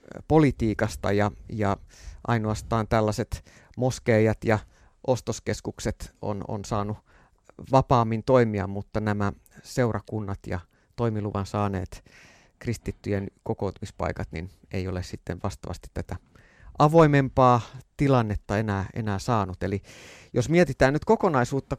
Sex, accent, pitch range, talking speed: male, native, 105-145 Hz, 100 wpm